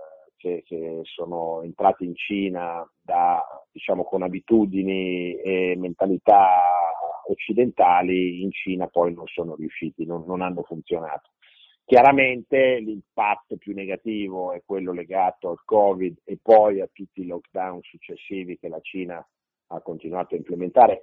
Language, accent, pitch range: Italian, native, 85-110 Hz